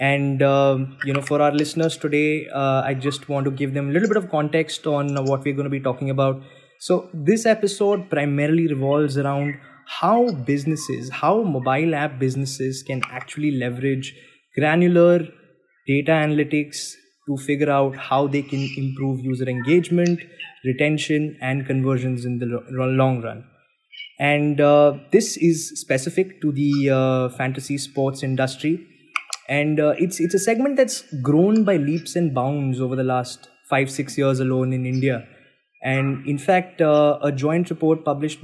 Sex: male